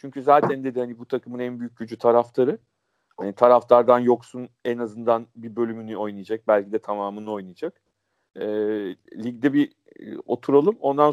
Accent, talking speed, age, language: native, 150 wpm, 40-59, Turkish